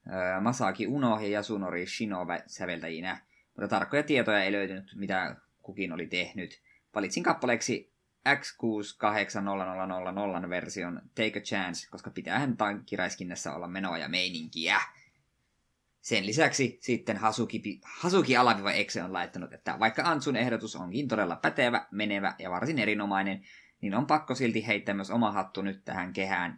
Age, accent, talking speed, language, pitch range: 20-39, native, 140 wpm, Finnish, 95-120 Hz